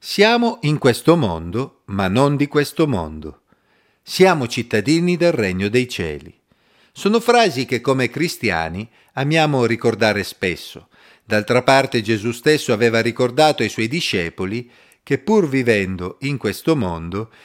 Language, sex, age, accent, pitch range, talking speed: Italian, male, 40-59, native, 110-150 Hz, 130 wpm